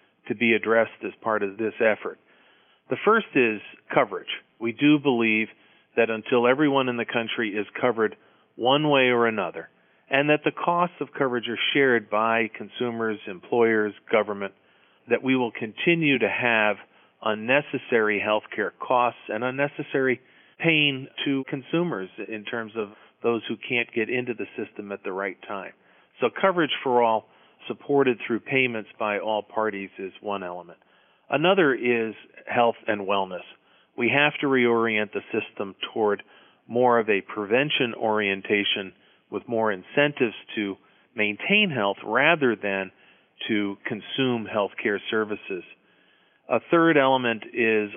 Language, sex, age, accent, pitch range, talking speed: English, male, 40-59, American, 105-130 Hz, 145 wpm